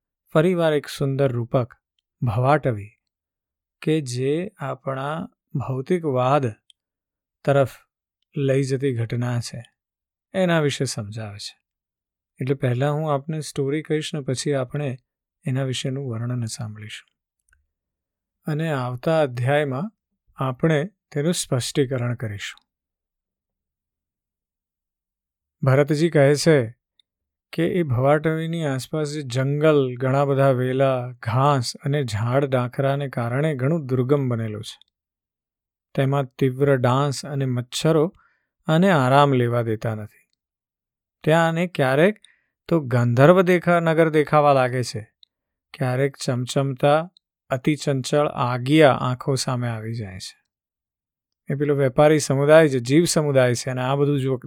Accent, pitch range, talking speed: native, 125-150 Hz, 90 wpm